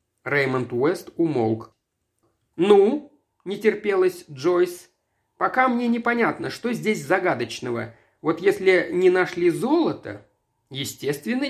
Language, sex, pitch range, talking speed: Russian, male, 150-220 Hz, 105 wpm